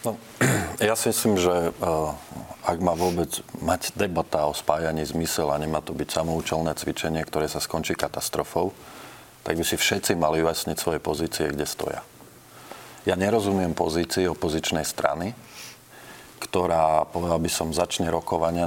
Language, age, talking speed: Slovak, 40-59, 140 wpm